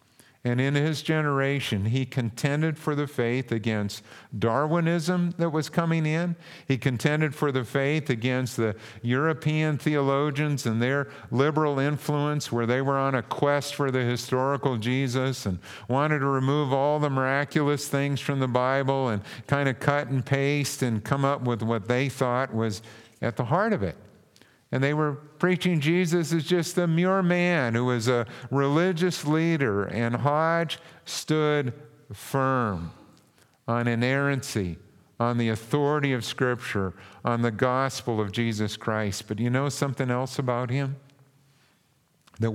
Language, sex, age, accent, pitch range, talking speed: English, male, 50-69, American, 115-145 Hz, 150 wpm